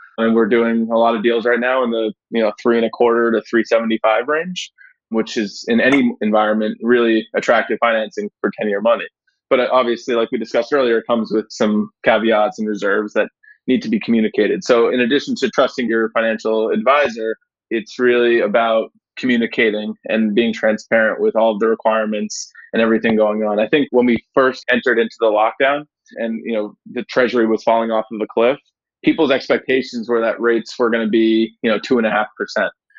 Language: English